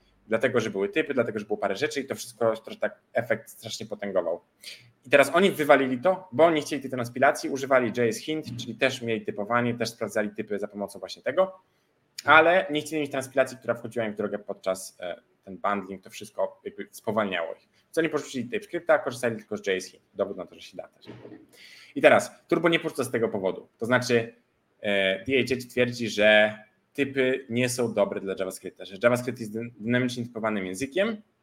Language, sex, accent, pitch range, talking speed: Polish, male, native, 100-135 Hz, 190 wpm